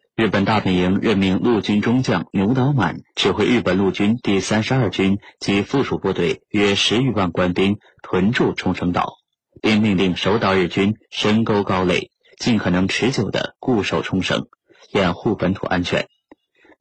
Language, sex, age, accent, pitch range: Chinese, male, 30-49, native, 95-110 Hz